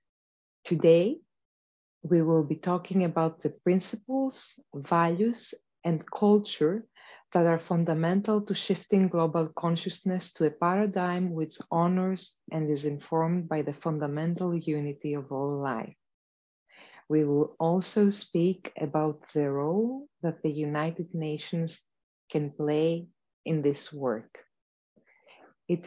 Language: English